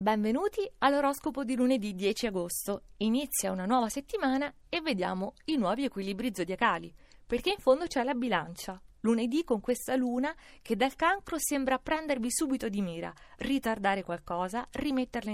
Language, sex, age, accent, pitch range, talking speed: Italian, female, 30-49, native, 205-275 Hz, 145 wpm